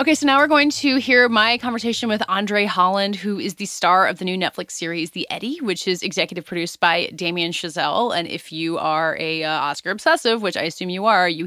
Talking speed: 230 wpm